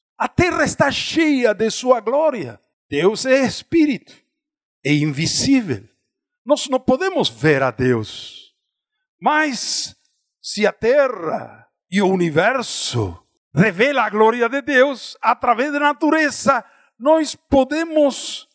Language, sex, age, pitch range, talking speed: Portuguese, male, 60-79, 195-285 Hz, 115 wpm